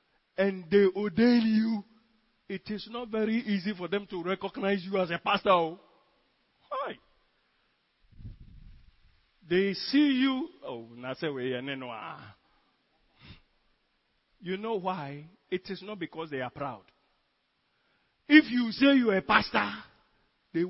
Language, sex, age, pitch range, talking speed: English, male, 50-69, 150-220 Hz, 115 wpm